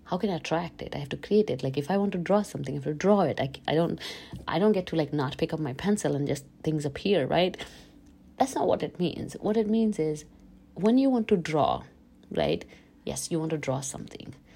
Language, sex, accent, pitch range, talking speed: English, female, Indian, 145-185 Hz, 245 wpm